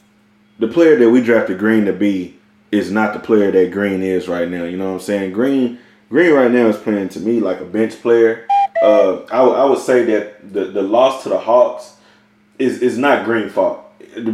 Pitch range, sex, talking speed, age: 110-125 Hz, male, 220 wpm, 20-39